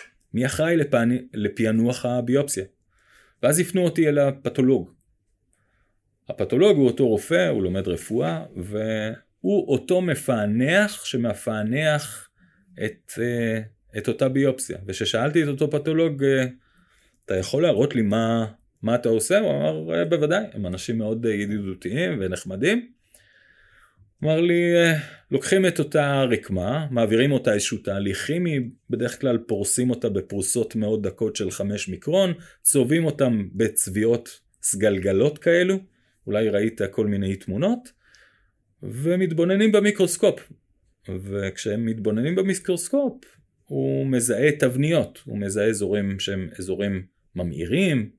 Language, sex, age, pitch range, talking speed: Hebrew, male, 30-49, 105-150 Hz, 110 wpm